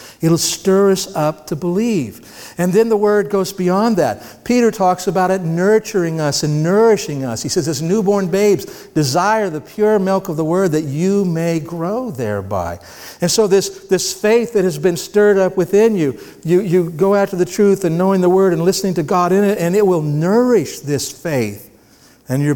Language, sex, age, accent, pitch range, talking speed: English, male, 60-79, American, 140-195 Hz, 200 wpm